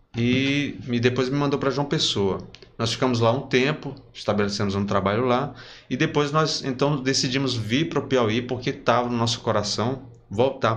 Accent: Brazilian